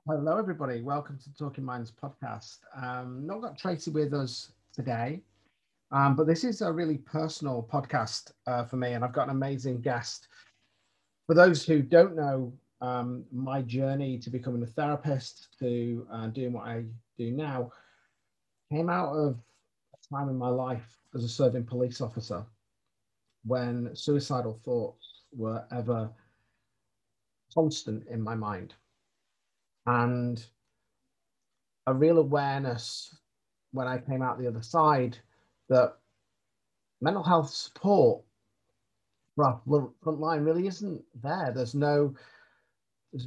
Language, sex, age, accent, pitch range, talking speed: English, male, 40-59, British, 115-145 Hz, 135 wpm